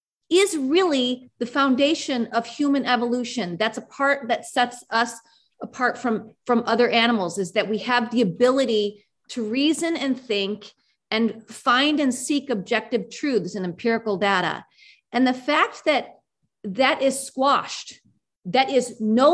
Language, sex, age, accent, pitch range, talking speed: English, female, 40-59, American, 215-270 Hz, 145 wpm